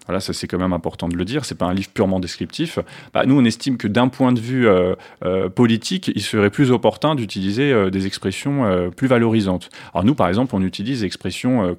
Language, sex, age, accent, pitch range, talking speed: French, male, 30-49, French, 95-120 Hz, 240 wpm